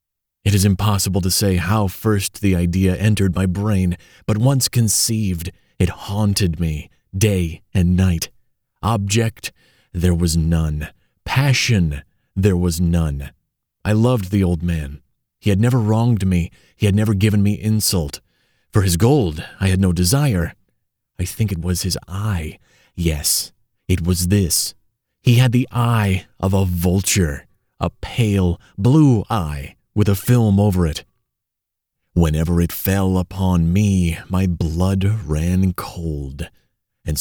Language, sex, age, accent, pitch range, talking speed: English, male, 30-49, American, 85-105 Hz, 140 wpm